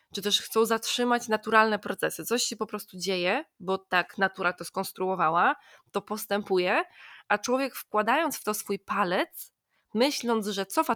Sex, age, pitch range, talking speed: female, 20-39, 205-245 Hz, 155 wpm